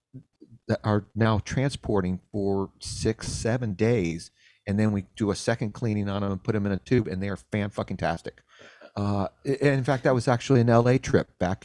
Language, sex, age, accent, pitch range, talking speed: English, male, 40-59, American, 95-115 Hz, 200 wpm